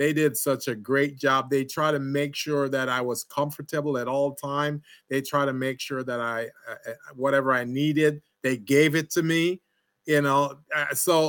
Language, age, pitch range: English, 30-49, 125-155 Hz